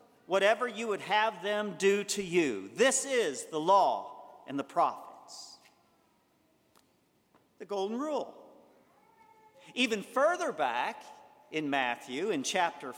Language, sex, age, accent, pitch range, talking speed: English, male, 50-69, American, 210-285 Hz, 115 wpm